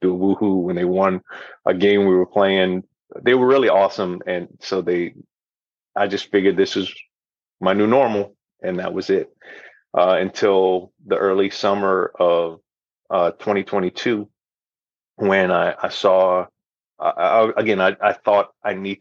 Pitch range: 90-105 Hz